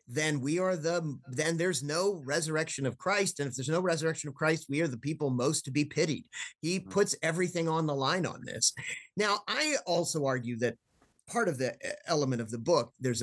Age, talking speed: 50-69, 205 wpm